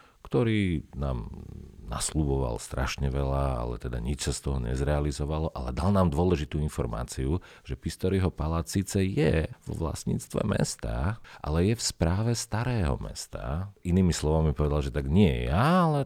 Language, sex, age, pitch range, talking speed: Slovak, male, 40-59, 65-85 Hz, 150 wpm